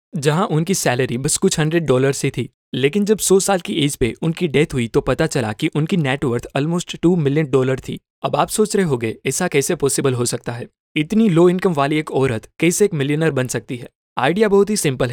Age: 20-39